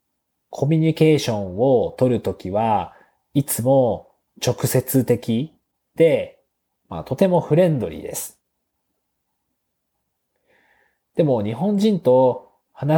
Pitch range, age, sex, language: 115-165 Hz, 40-59, male, Japanese